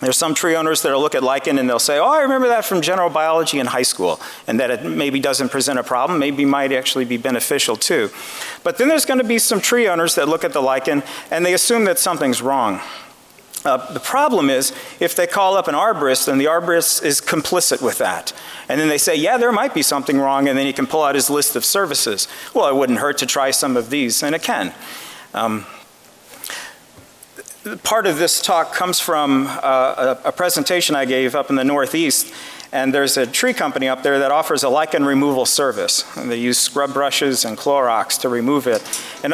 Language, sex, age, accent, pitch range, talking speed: English, male, 40-59, American, 135-180 Hz, 215 wpm